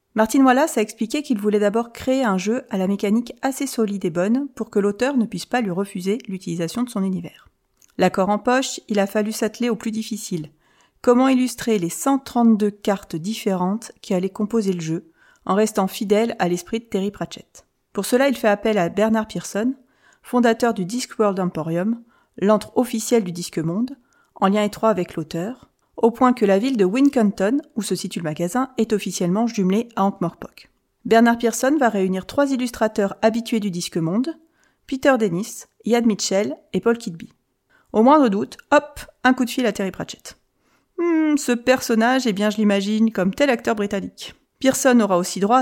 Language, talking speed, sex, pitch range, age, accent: French, 185 wpm, female, 195-245 Hz, 40-59, French